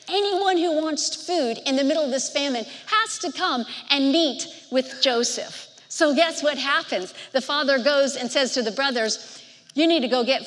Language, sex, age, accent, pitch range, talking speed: English, female, 50-69, American, 255-335 Hz, 195 wpm